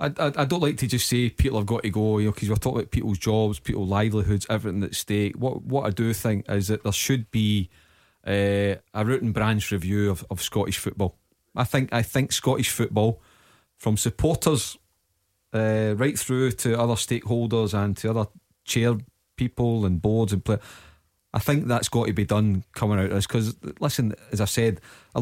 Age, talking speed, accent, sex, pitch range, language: 30-49, 205 wpm, British, male, 100-120 Hz, English